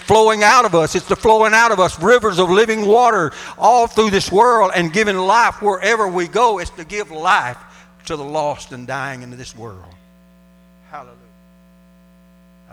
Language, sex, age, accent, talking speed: English, male, 60-79, American, 175 wpm